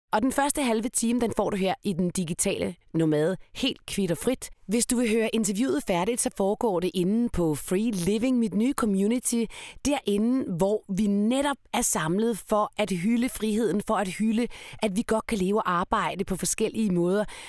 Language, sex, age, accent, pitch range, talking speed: Danish, female, 30-49, native, 180-230 Hz, 185 wpm